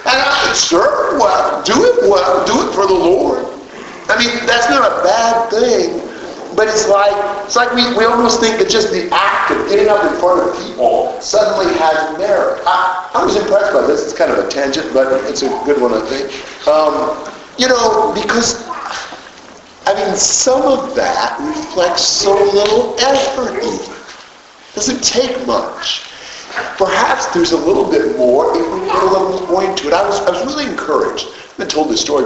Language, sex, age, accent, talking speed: English, male, 50-69, American, 190 wpm